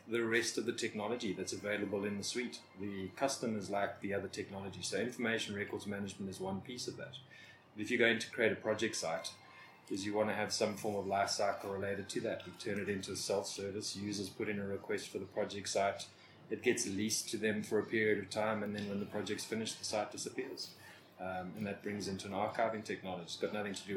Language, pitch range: English, 95-110 Hz